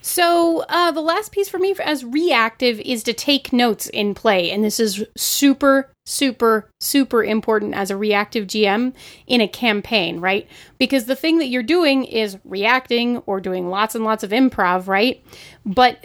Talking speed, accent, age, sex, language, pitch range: 175 wpm, American, 30-49, female, English, 195-250 Hz